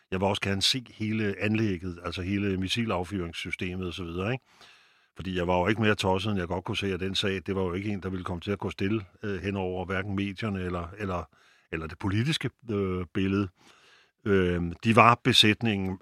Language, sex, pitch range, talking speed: Danish, male, 95-110 Hz, 210 wpm